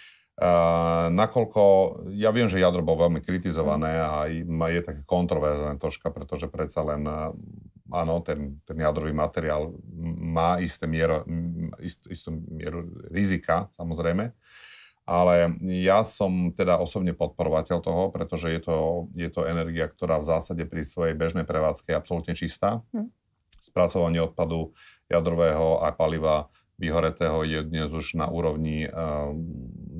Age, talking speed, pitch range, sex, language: 40-59, 130 wpm, 80-85 Hz, male, Slovak